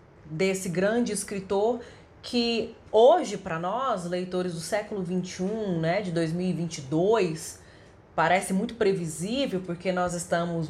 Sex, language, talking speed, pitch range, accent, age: female, Portuguese, 110 wpm, 175-220 Hz, Brazilian, 30-49